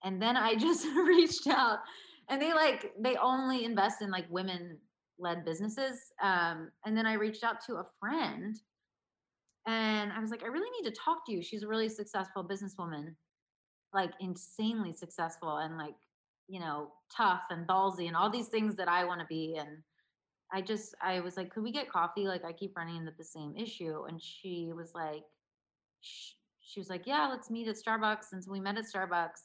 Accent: American